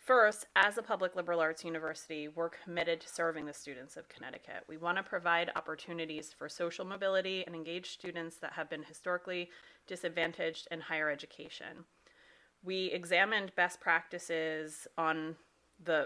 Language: English